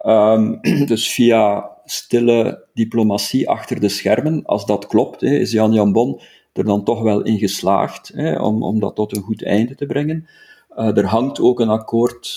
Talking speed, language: 180 wpm, Dutch